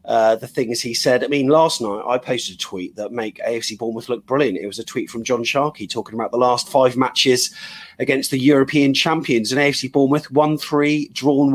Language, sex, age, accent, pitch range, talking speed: English, male, 30-49, British, 120-160 Hz, 220 wpm